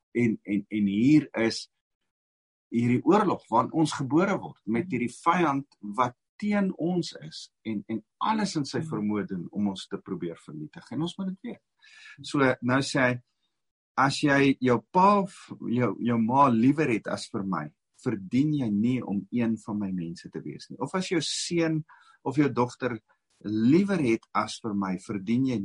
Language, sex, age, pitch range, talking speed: English, male, 50-69, 105-150 Hz, 175 wpm